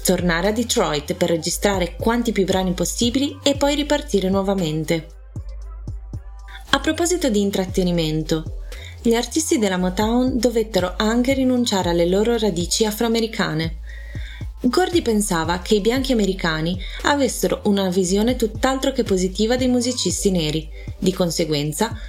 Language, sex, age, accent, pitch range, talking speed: Italian, female, 30-49, native, 180-240 Hz, 120 wpm